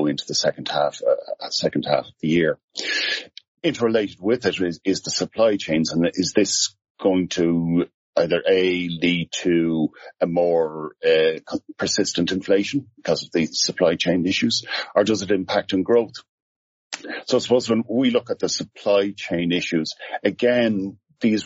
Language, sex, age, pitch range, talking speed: English, male, 50-69, 85-115 Hz, 160 wpm